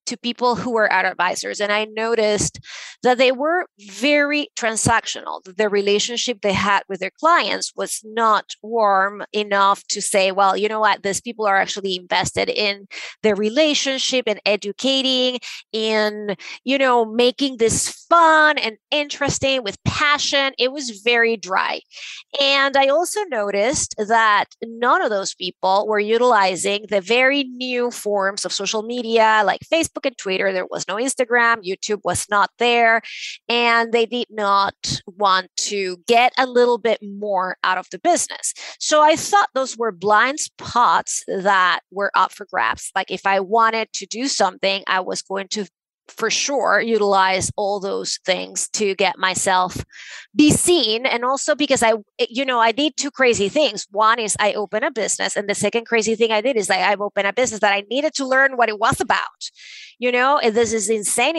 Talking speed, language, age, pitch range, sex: 175 wpm, English, 30-49, 200-255 Hz, female